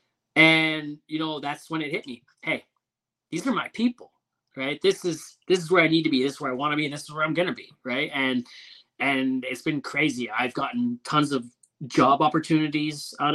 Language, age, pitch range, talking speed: English, 20-39, 125-155 Hz, 225 wpm